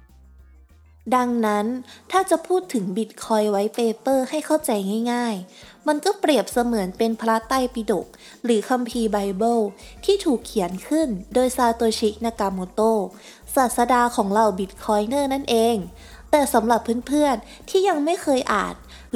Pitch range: 210-265 Hz